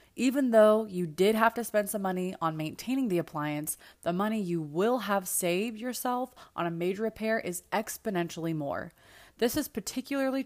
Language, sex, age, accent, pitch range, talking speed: English, female, 20-39, American, 165-225 Hz, 170 wpm